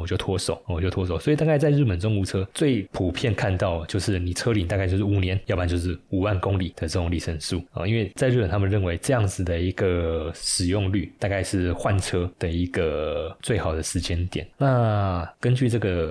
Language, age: Chinese, 20-39